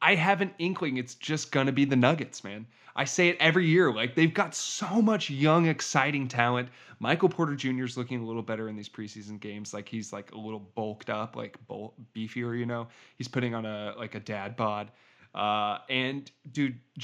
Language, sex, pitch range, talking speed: English, male, 110-160 Hz, 210 wpm